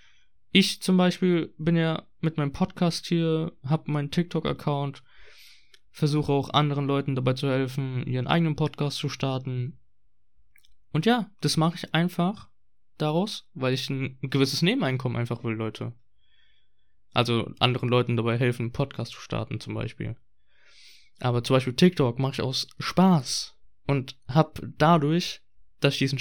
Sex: male